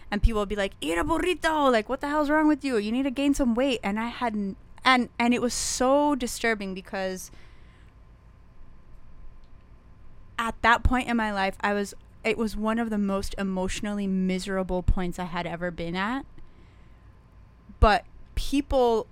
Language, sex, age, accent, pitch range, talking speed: English, female, 20-39, American, 190-235 Hz, 175 wpm